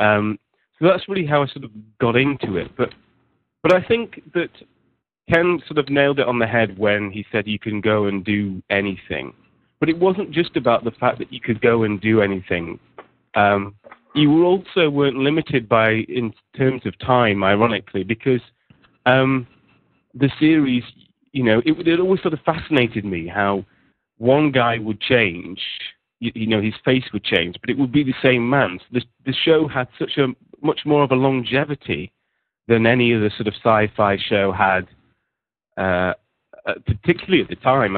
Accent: British